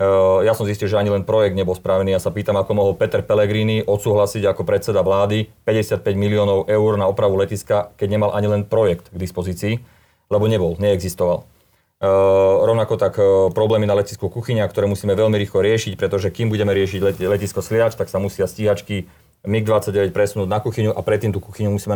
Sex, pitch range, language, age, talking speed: male, 100-110 Hz, Slovak, 30-49, 185 wpm